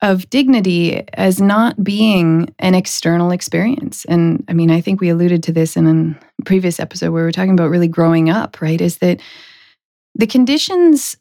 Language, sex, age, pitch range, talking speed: English, female, 20-39, 160-190 Hz, 180 wpm